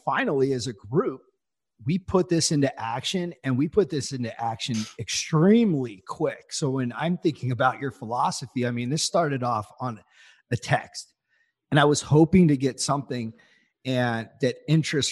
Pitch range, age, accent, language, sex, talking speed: 120-155 Hz, 40-59, American, English, male, 165 wpm